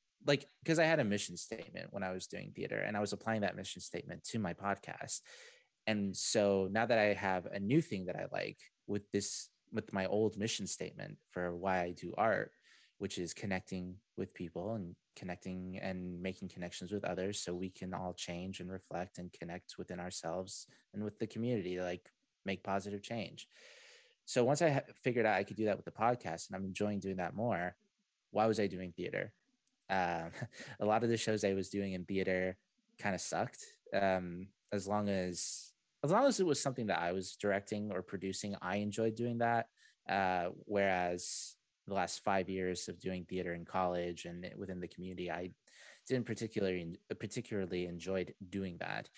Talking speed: 190 wpm